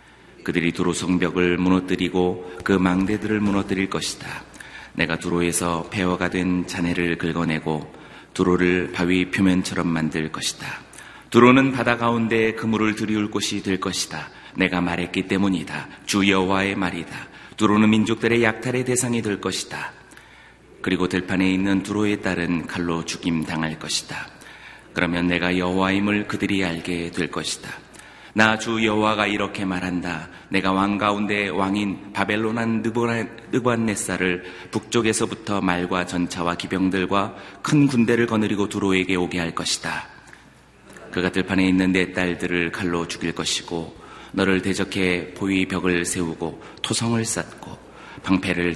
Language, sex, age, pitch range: Korean, male, 30-49, 90-110 Hz